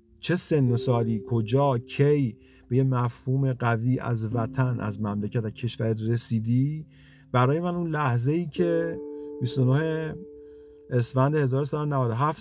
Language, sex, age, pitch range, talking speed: Persian, male, 50-69, 115-155 Hz, 125 wpm